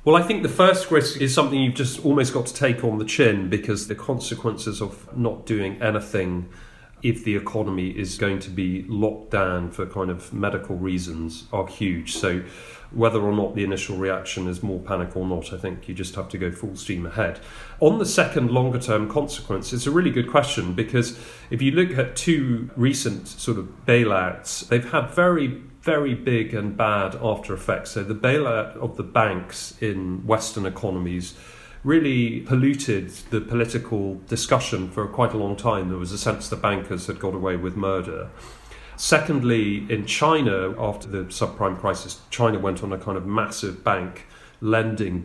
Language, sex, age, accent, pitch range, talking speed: English, male, 40-59, British, 95-120 Hz, 185 wpm